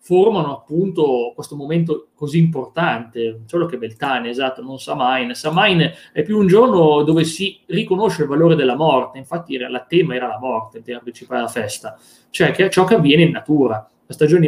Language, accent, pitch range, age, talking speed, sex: Italian, native, 125-165 Hz, 20-39, 190 wpm, male